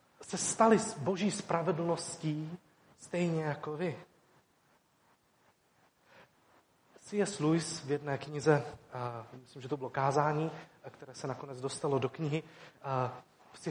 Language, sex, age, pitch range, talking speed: Czech, male, 30-49, 145-180 Hz, 120 wpm